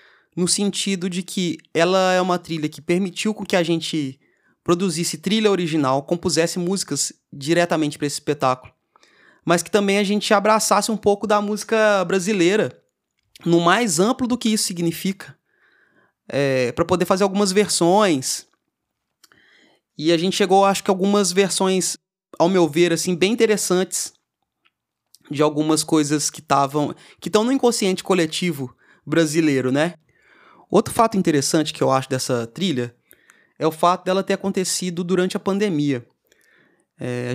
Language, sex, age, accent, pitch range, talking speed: Portuguese, male, 20-39, Brazilian, 155-195 Hz, 145 wpm